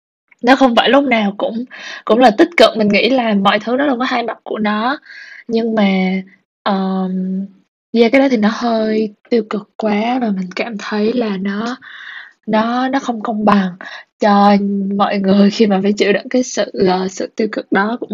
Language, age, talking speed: Vietnamese, 20-39, 205 wpm